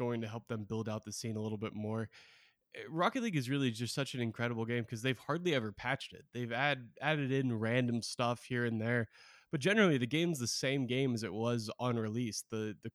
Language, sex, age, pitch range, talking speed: English, male, 20-39, 115-140 Hz, 230 wpm